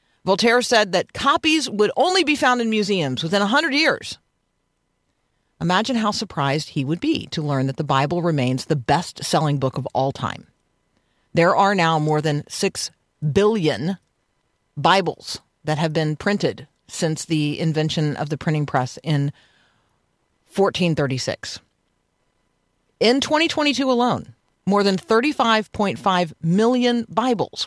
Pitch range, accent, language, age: 155-225 Hz, American, English, 40-59